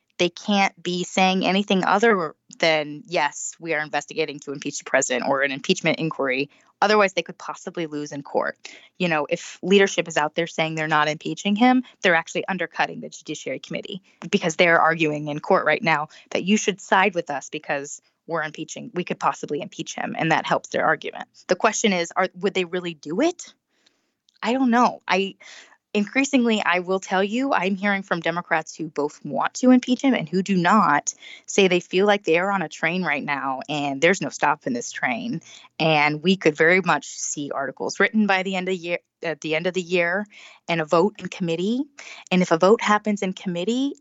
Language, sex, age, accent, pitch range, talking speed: English, female, 20-39, American, 160-205 Hz, 205 wpm